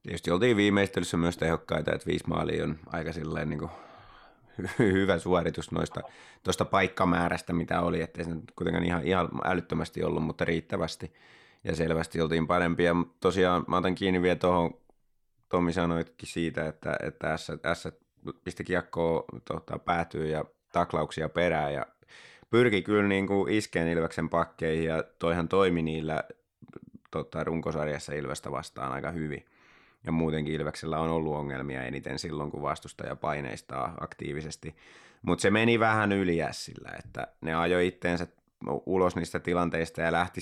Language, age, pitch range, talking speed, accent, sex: Finnish, 20-39, 80-90 Hz, 140 wpm, native, male